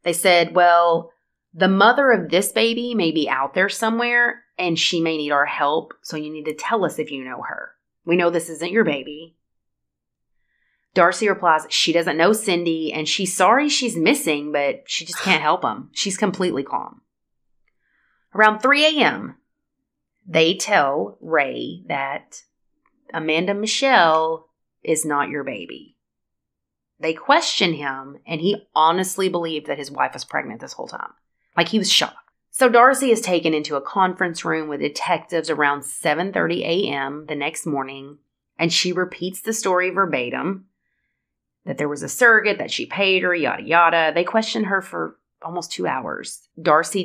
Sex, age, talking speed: female, 30-49, 165 wpm